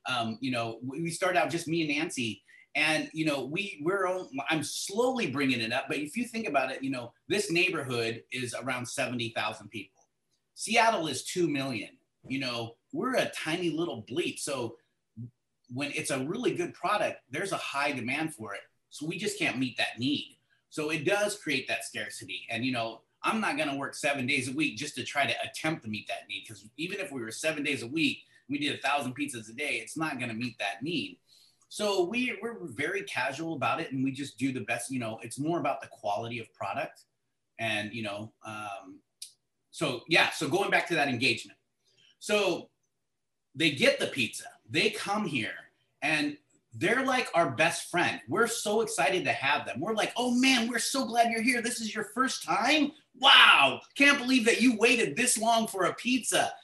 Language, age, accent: English, 30-49, American